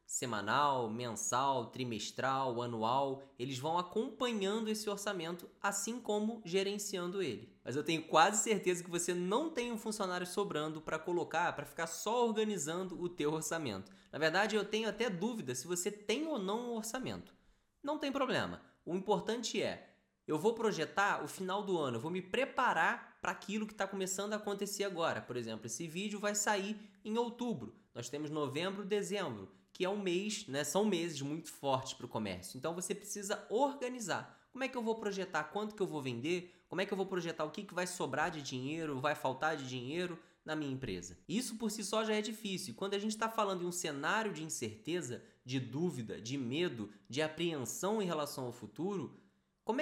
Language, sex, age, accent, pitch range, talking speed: Portuguese, male, 20-39, Brazilian, 150-210 Hz, 190 wpm